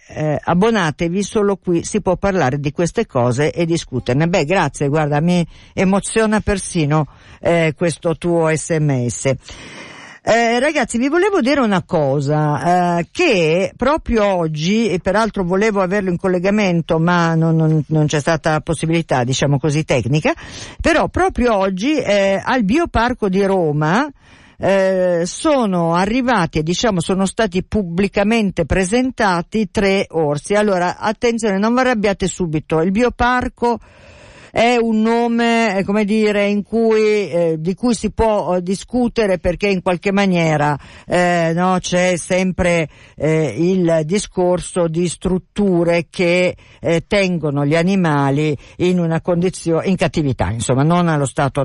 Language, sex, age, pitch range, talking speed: Italian, female, 50-69, 155-210 Hz, 135 wpm